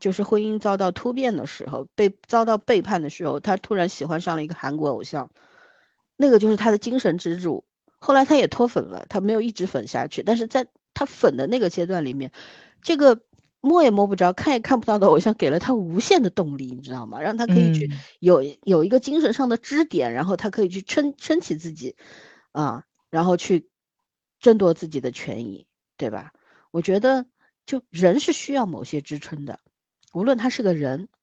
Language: Chinese